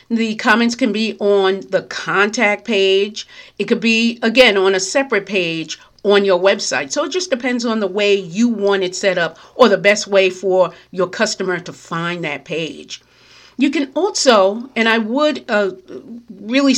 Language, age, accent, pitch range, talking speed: English, 50-69, American, 190-240 Hz, 180 wpm